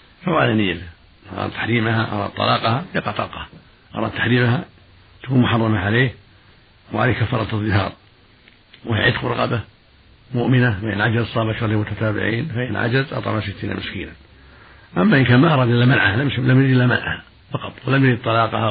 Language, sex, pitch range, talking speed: Arabic, male, 105-120 Hz, 145 wpm